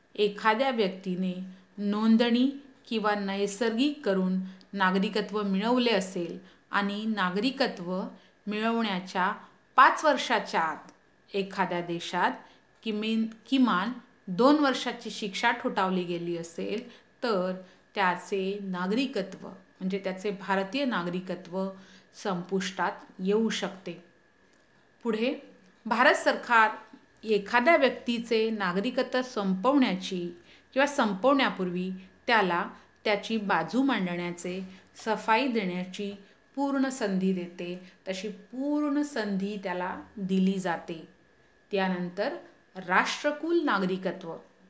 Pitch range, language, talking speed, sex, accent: 185-240 Hz, Hindi, 70 wpm, female, native